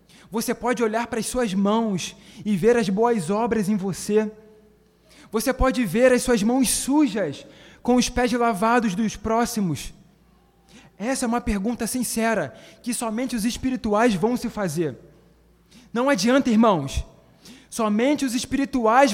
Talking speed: 140 wpm